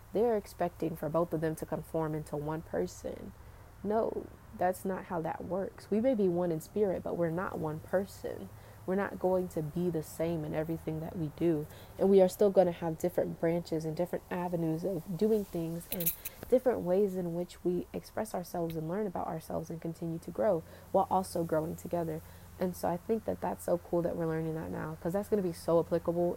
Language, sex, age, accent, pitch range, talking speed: English, female, 20-39, American, 160-185 Hz, 215 wpm